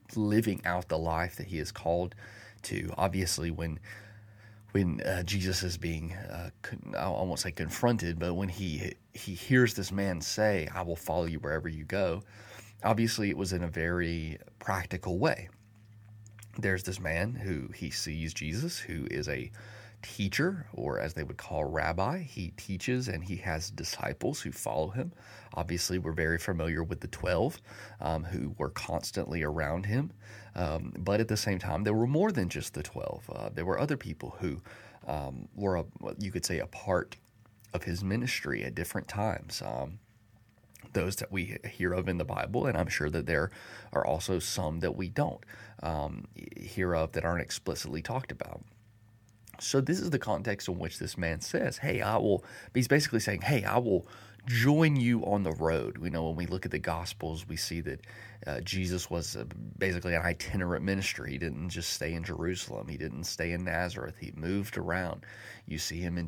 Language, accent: English, American